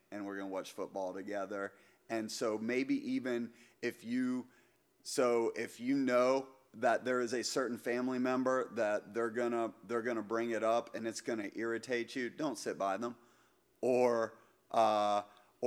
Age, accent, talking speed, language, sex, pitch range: 30-49, American, 160 wpm, English, male, 115-135 Hz